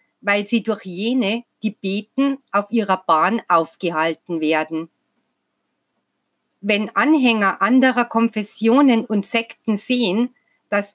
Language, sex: German, female